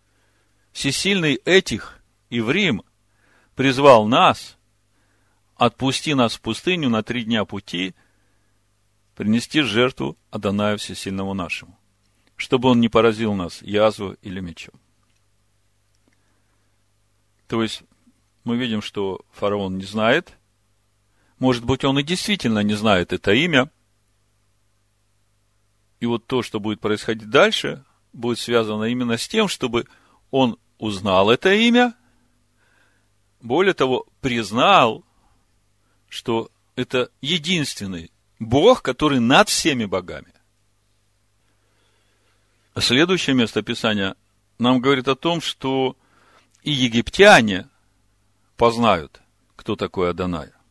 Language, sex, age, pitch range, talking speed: Russian, male, 40-59, 100-120 Hz, 105 wpm